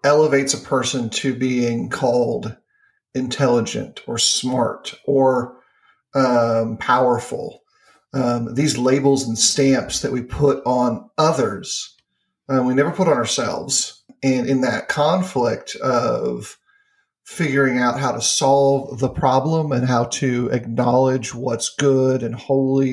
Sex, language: male, English